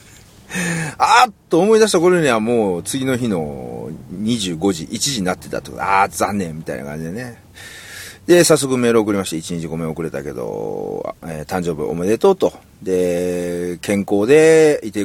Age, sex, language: 40-59, male, Japanese